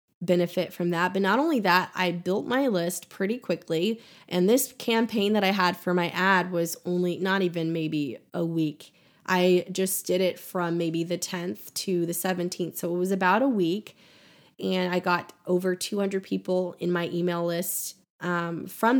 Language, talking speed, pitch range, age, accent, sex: English, 185 wpm, 175-205 Hz, 20-39, American, female